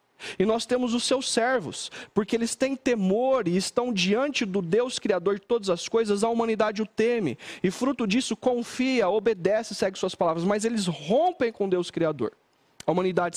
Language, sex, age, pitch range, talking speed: Portuguese, male, 40-59, 195-235 Hz, 180 wpm